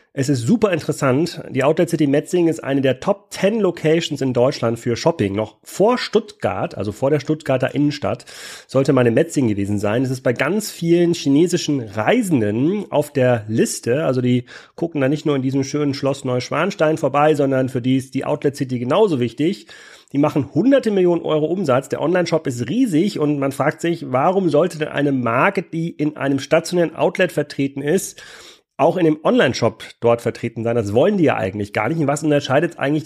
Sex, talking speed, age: male, 190 wpm, 40-59